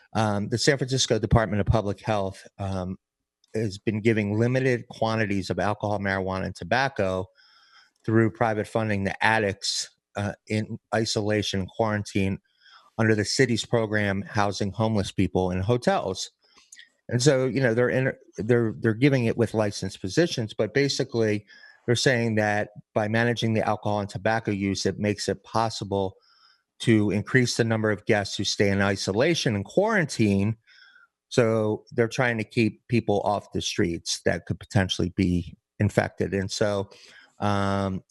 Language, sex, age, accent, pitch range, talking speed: English, male, 30-49, American, 100-115 Hz, 150 wpm